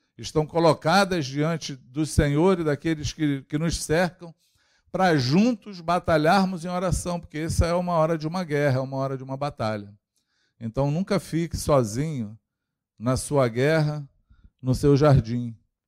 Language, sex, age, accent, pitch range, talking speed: Portuguese, male, 50-69, Brazilian, 110-145 Hz, 150 wpm